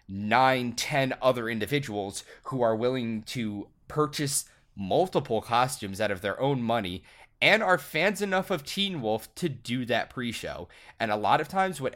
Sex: male